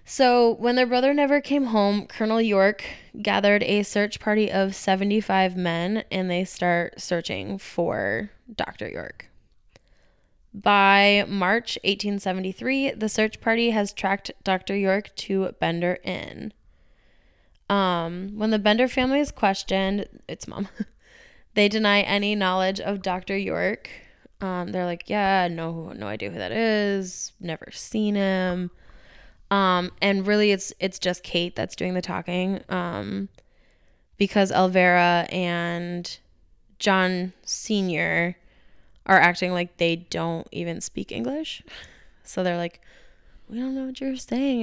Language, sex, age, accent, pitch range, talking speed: English, female, 10-29, American, 180-220 Hz, 135 wpm